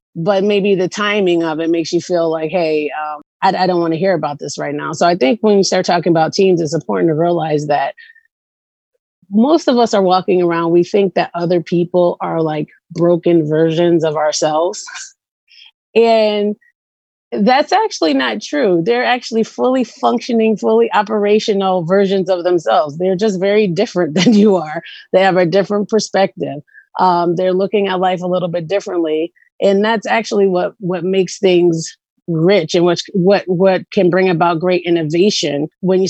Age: 30-49